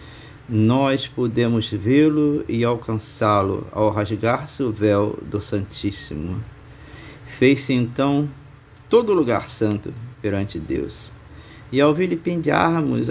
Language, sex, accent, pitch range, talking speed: Portuguese, male, Brazilian, 110-130 Hz, 95 wpm